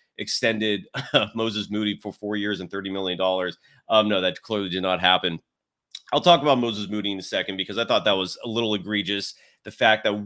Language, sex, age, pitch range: English, male, 30-49, 110-165 Hz